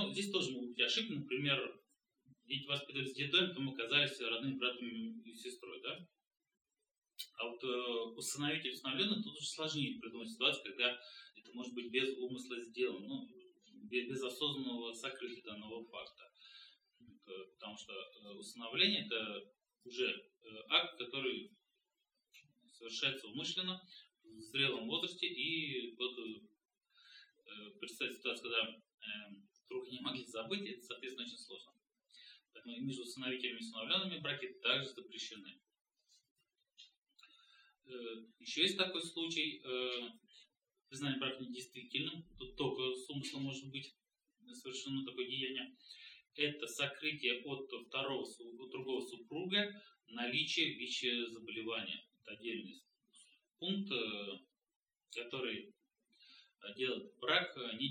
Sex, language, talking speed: male, Russian, 110 wpm